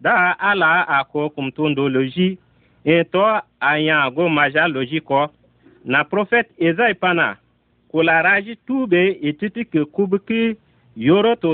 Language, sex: Arabic, male